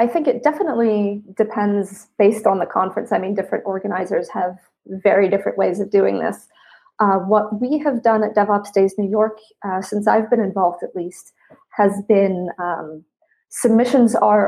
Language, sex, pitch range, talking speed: English, female, 195-220 Hz, 175 wpm